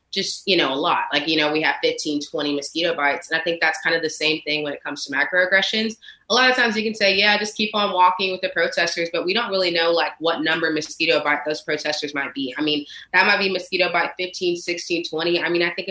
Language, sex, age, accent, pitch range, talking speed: English, female, 20-39, American, 150-180 Hz, 270 wpm